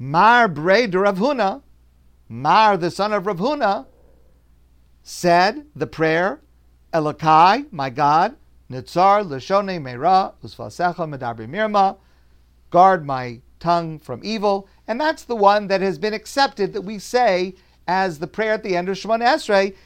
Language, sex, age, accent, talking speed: English, male, 50-69, American, 140 wpm